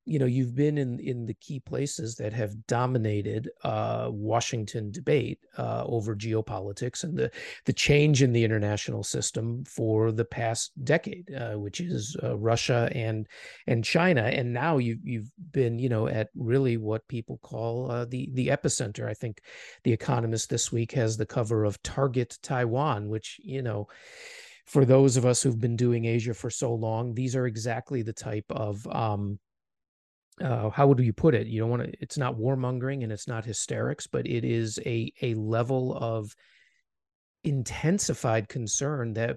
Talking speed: 170 wpm